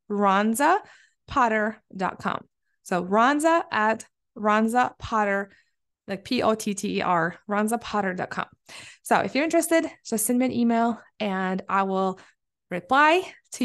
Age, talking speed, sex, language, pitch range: 20-39, 95 wpm, female, English, 195-265 Hz